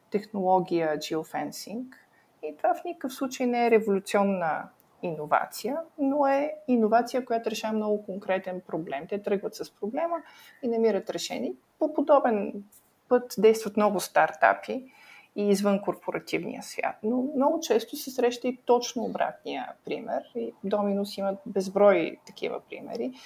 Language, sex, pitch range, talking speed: Bulgarian, female, 195-245 Hz, 130 wpm